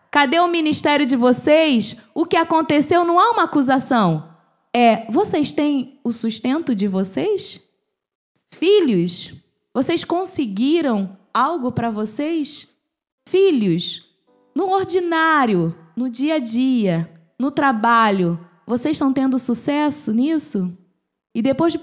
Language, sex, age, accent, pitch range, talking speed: Portuguese, female, 20-39, Brazilian, 220-320 Hz, 115 wpm